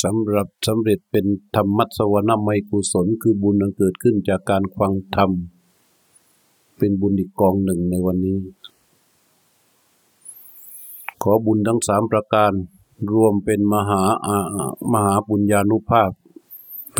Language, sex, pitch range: Thai, male, 95-110 Hz